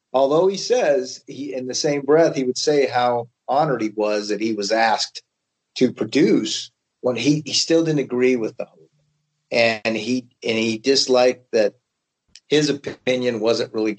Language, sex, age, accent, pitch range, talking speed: English, male, 40-59, American, 105-125 Hz, 170 wpm